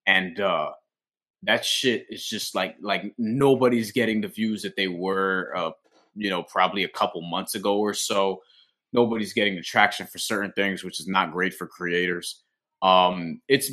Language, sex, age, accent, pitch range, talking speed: English, male, 20-39, American, 95-115 Hz, 175 wpm